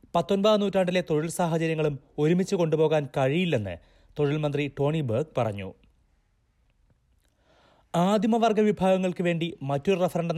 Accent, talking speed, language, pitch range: native, 100 wpm, Malayalam, 125-170 Hz